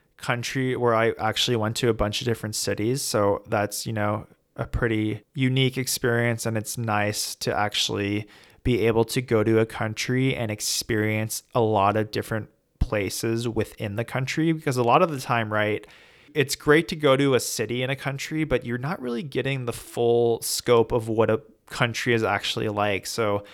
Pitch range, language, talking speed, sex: 105-125 Hz, English, 190 wpm, male